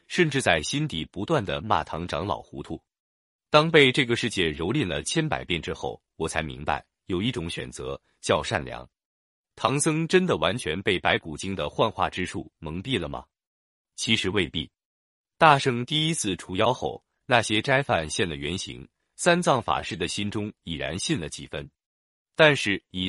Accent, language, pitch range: native, Chinese, 85-135 Hz